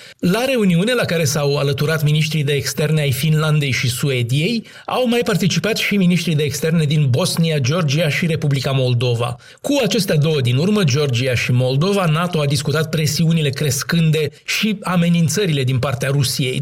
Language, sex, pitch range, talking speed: Romanian, male, 140-180 Hz, 160 wpm